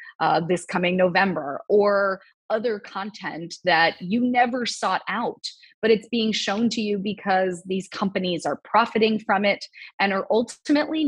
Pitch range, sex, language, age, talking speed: 180-230 Hz, female, English, 20-39, 150 wpm